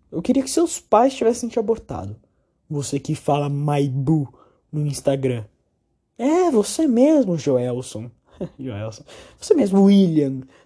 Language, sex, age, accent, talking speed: Portuguese, male, 20-39, Brazilian, 125 wpm